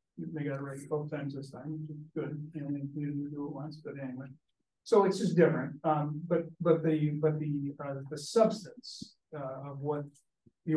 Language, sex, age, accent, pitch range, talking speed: English, male, 50-69, American, 135-155 Hz, 200 wpm